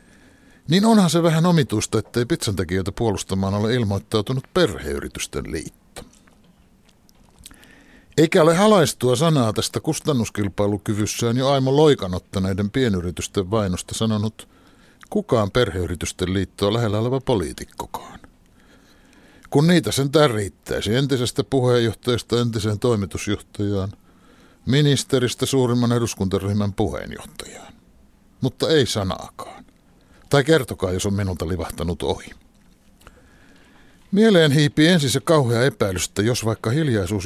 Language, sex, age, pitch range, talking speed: Finnish, male, 60-79, 95-135 Hz, 100 wpm